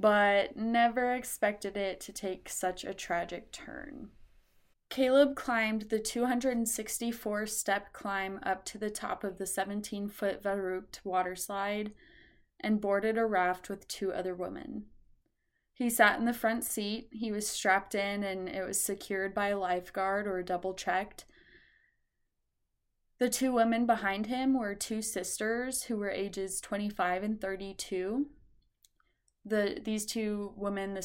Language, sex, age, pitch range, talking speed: English, female, 20-39, 190-220 Hz, 140 wpm